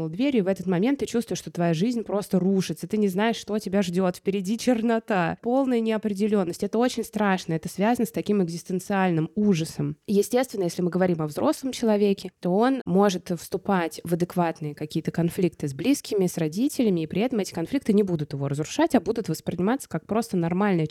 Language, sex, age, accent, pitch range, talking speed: Russian, female, 20-39, native, 170-225 Hz, 185 wpm